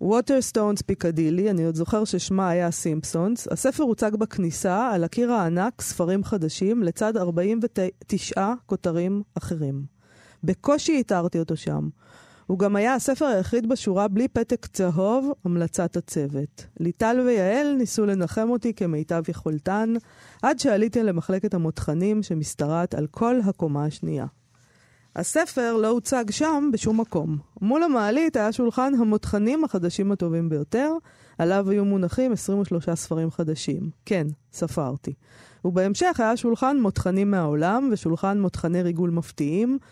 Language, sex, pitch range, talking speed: Hebrew, female, 170-235 Hz, 125 wpm